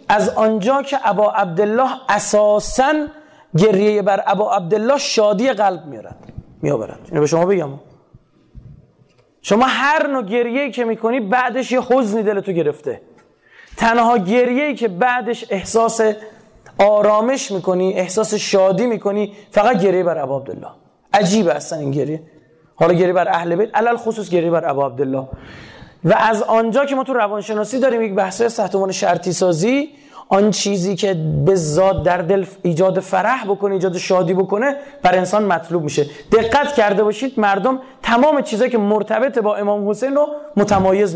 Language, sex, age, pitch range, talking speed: Persian, male, 30-49, 185-240 Hz, 150 wpm